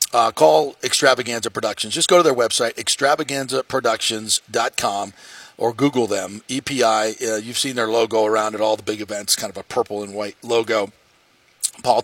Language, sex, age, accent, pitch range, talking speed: English, male, 40-59, American, 110-130 Hz, 165 wpm